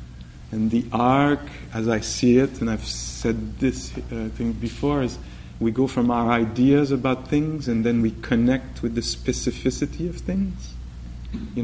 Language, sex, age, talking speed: English, male, 40-59, 165 wpm